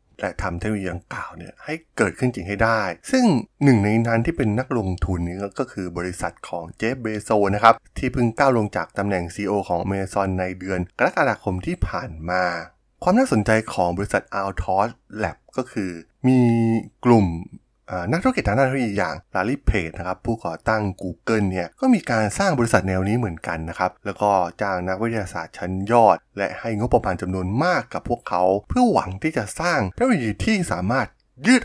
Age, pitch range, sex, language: 20-39, 90-125 Hz, male, Thai